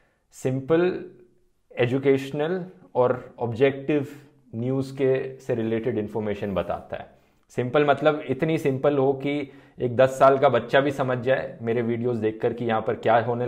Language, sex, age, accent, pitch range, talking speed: Hindi, male, 20-39, native, 115-140 Hz, 145 wpm